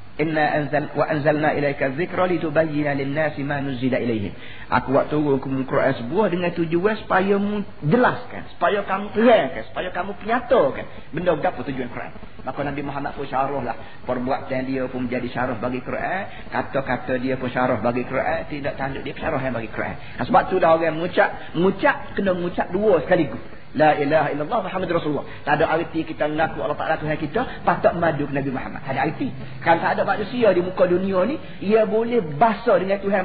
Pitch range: 140-210 Hz